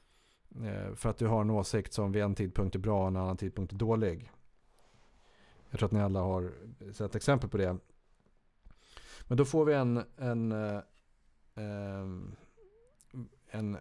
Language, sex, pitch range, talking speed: Swedish, male, 95-115 Hz, 155 wpm